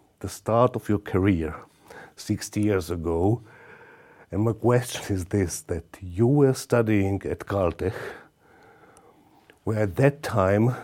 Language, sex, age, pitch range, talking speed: Slovak, male, 60-79, 105-130 Hz, 125 wpm